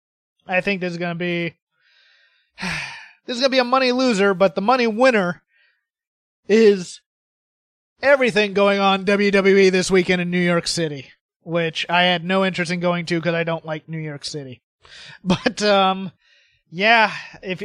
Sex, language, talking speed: male, English, 160 wpm